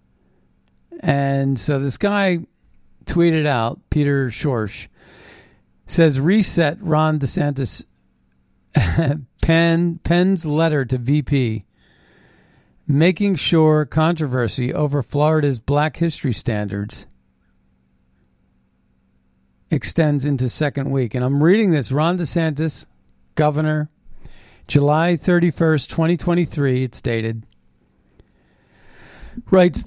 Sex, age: male, 50-69